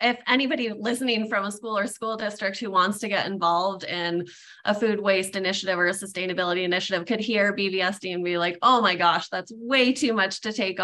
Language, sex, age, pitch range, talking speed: English, female, 20-39, 170-200 Hz, 210 wpm